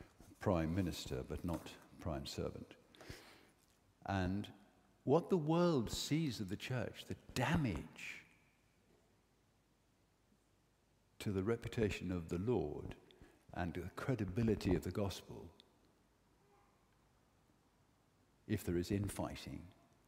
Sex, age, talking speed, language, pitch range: male, 60-79, 100 wpm, English, 90-140 Hz